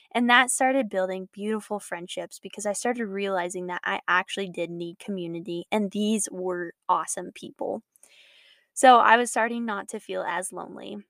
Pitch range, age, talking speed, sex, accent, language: 185-220 Hz, 10-29, 160 wpm, female, American, English